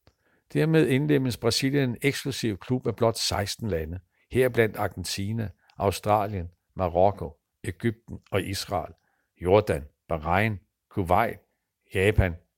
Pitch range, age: 90-125 Hz, 60-79